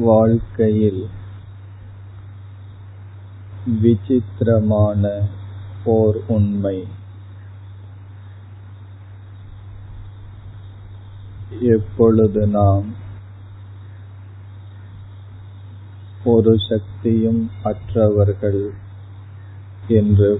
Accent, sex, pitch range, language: native, male, 100-105 Hz, Tamil